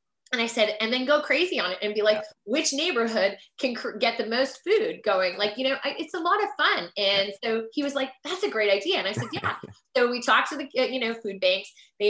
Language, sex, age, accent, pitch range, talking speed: English, female, 20-39, American, 210-280 Hz, 255 wpm